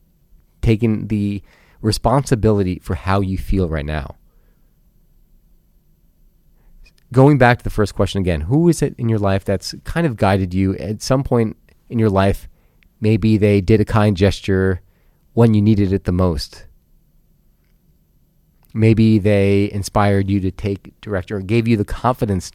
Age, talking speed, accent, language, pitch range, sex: 30-49, 150 wpm, American, English, 95-125 Hz, male